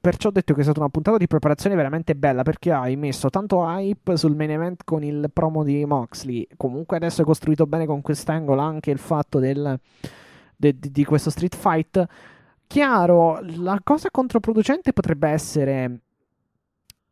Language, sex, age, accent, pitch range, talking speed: Italian, male, 20-39, native, 130-155 Hz, 170 wpm